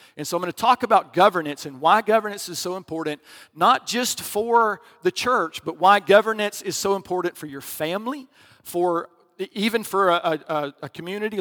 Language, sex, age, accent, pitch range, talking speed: English, male, 50-69, American, 160-200 Hz, 185 wpm